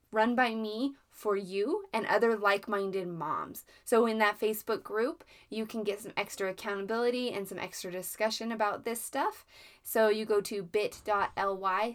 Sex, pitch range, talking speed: female, 190-245 Hz, 160 wpm